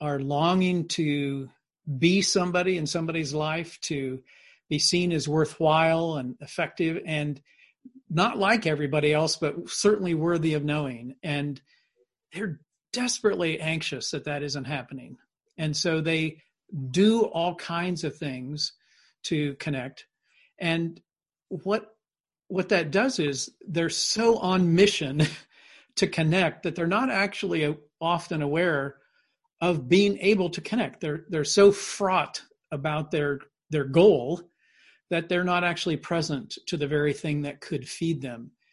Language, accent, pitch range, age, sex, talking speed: English, American, 150-185 Hz, 50-69, male, 135 wpm